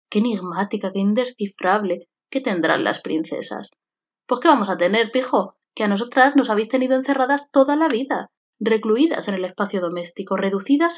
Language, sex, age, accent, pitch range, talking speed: Spanish, female, 20-39, Spanish, 195-255 Hz, 165 wpm